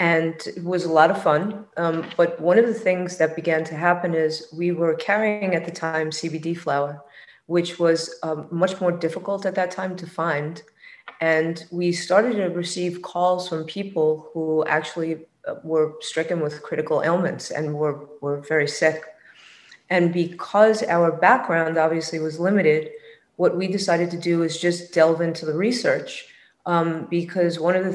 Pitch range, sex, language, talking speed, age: 160-180 Hz, female, English, 170 wpm, 30-49